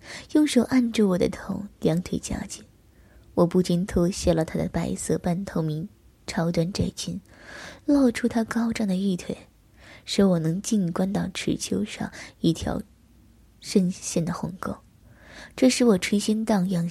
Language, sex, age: Chinese, female, 20-39